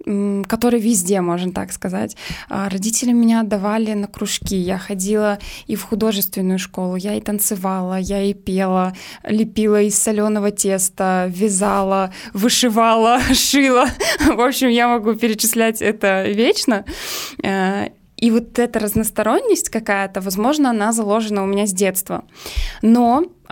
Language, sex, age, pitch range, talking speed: Russian, female, 20-39, 195-230 Hz, 125 wpm